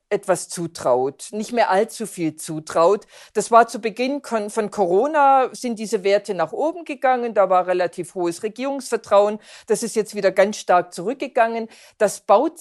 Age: 50-69